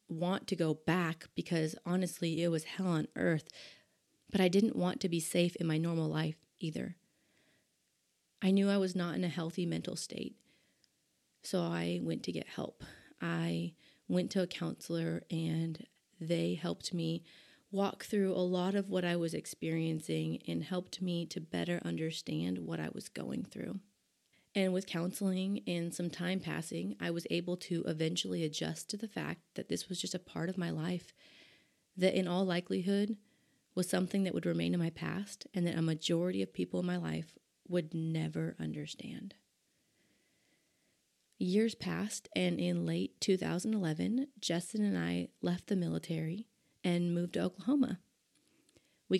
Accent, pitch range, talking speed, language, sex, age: American, 160-190 Hz, 165 wpm, English, female, 30-49